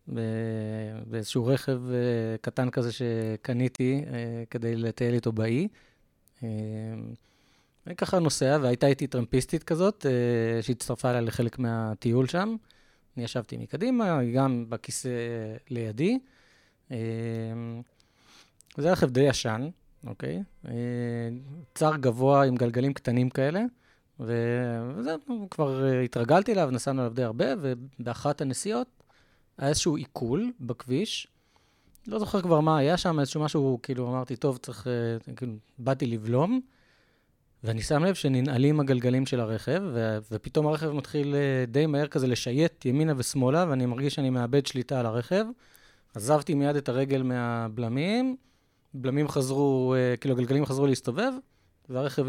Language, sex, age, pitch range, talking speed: Hebrew, male, 20-39, 120-150 Hz, 125 wpm